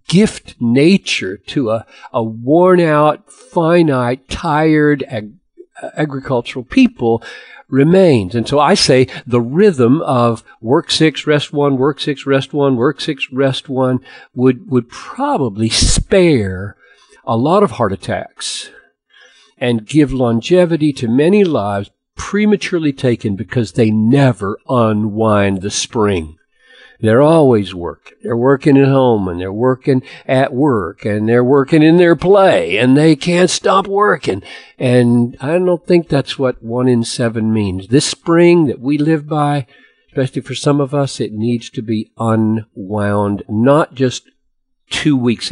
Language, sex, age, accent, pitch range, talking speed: English, male, 50-69, American, 110-150 Hz, 140 wpm